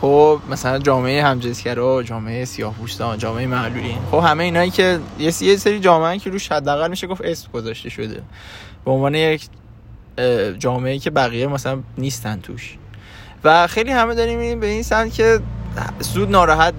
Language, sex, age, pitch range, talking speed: Persian, male, 20-39, 120-165 Hz, 155 wpm